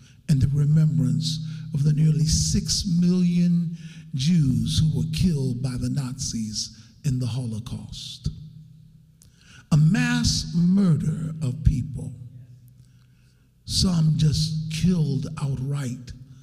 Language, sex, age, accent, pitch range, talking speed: English, male, 60-79, American, 135-160 Hz, 100 wpm